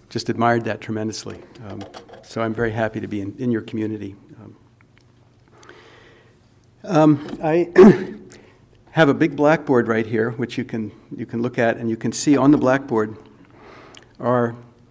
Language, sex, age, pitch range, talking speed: English, male, 50-69, 110-125 Hz, 155 wpm